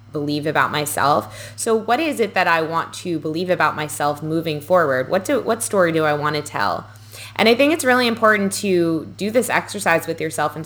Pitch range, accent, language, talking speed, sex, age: 155-200 Hz, American, English, 215 wpm, female, 20-39